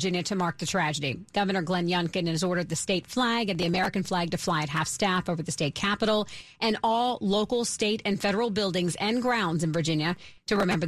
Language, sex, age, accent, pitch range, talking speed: English, female, 40-59, American, 180-225 Hz, 215 wpm